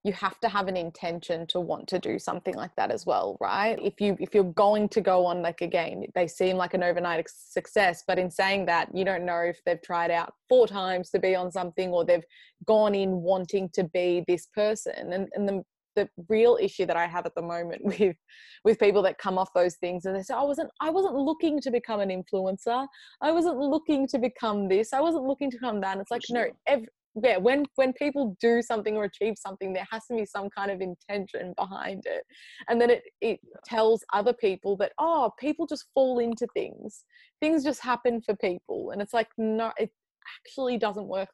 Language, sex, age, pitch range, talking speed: English, female, 20-39, 185-250 Hz, 220 wpm